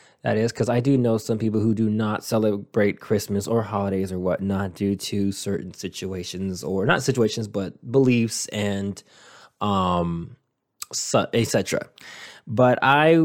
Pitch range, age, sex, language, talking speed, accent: 105-130 Hz, 20-39, male, English, 140 wpm, American